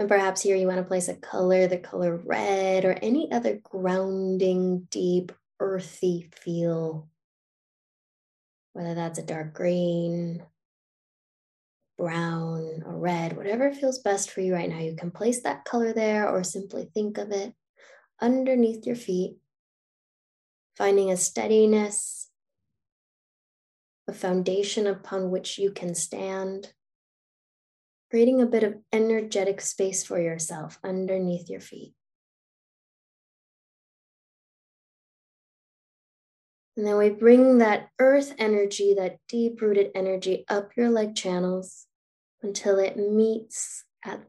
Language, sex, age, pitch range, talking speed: English, female, 10-29, 185-215 Hz, 120 wpm